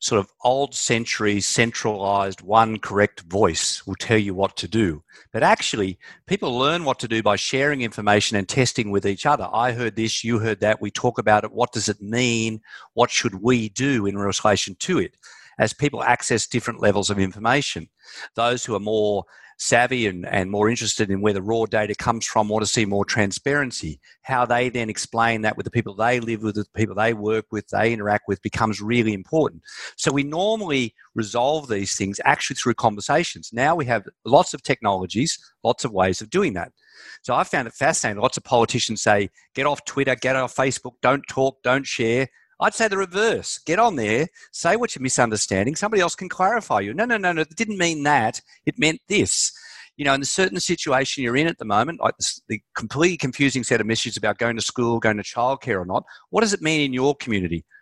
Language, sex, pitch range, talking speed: English, male, 105-140 Hz, 210 wpm